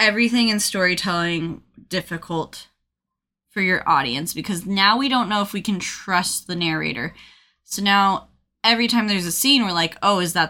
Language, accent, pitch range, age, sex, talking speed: English, American, 170-215 Hz, 10-29, female, 170 wpm